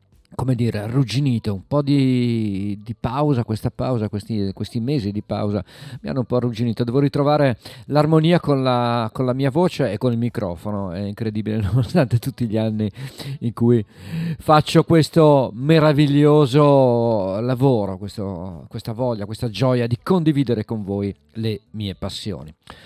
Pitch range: 110-145 Hz